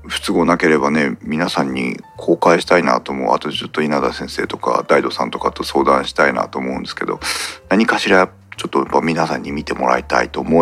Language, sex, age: Japanese, male, 40-59